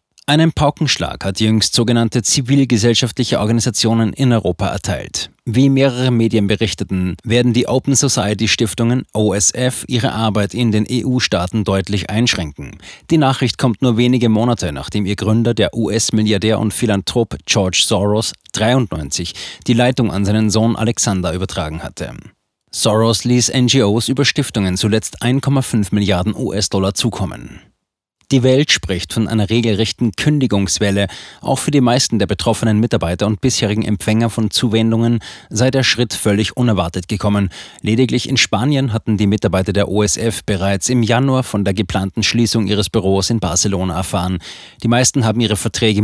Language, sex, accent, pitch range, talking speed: German, male, German, 100-125 Hz, 145 wpm